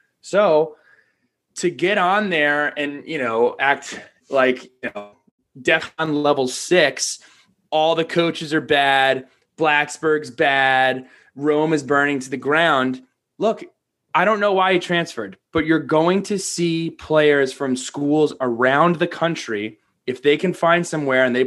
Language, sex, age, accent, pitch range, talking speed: English, male, 20-39, American, 130-170 Hz, 145 wpm